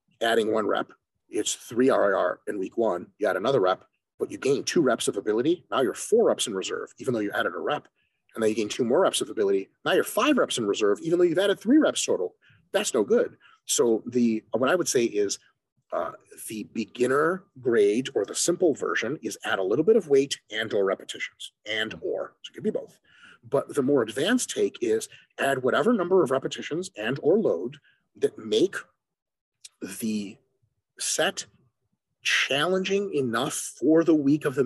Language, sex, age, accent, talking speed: English, male, 30-49, American, 195 wpm